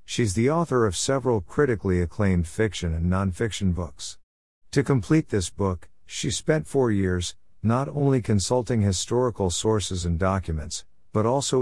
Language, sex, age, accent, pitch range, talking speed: English, male, 50-69, American, 85-115 Hz, 145 wpm